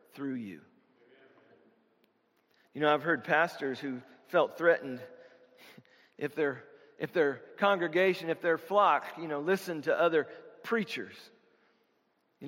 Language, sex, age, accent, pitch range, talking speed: English, male, 40-59, American, 190-270 Hz, 115 wpm